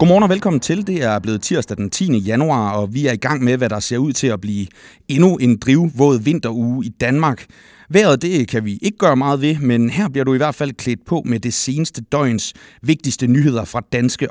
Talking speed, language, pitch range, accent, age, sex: 230 wpm, Danish, 110-145 Hz, native, 30-49, male